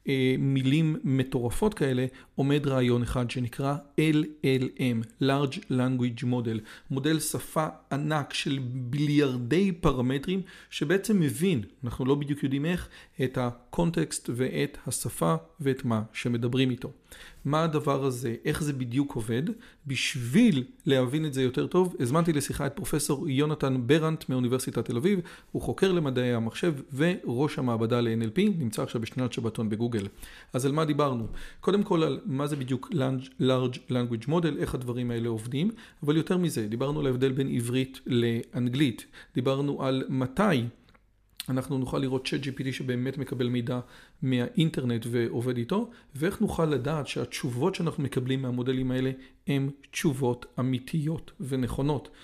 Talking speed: 135 wpm